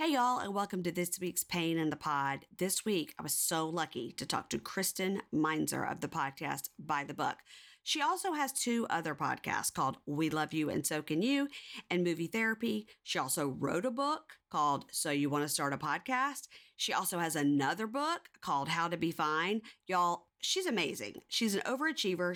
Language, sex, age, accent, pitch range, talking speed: English, female, 40-59, American, 160-230 Hz, 200 wpm